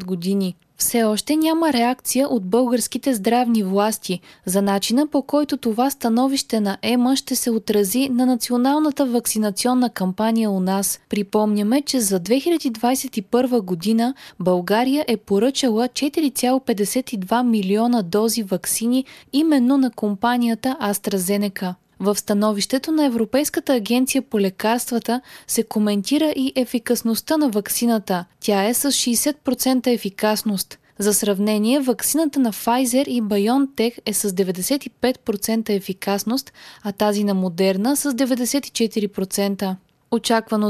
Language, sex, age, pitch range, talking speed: Bulgarian, female, 20-39, 205-260 Hz, 115 wpm